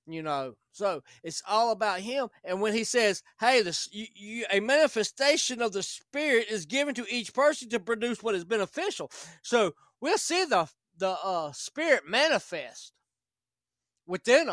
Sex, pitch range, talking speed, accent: male, 185-240 Hz, 160 wpm, American